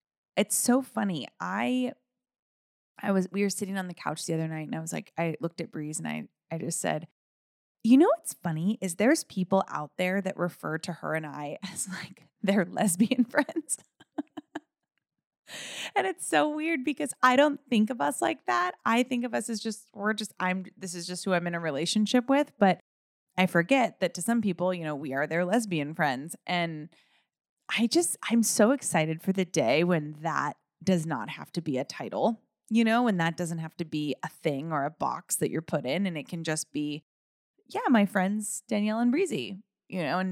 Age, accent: 20-39, American